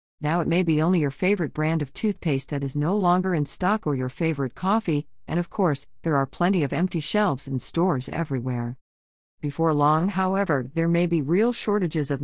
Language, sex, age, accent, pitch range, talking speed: English, female, 50-69, American, 140-180 Hz, 200 wpm